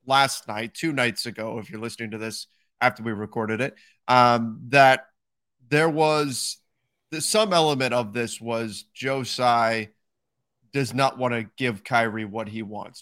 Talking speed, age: 160 wpm, 30-49